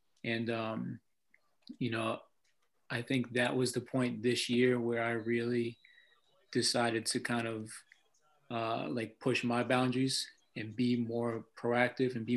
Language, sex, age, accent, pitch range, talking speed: English, male, 20-39, American, 110-120 Hz, 145 wpm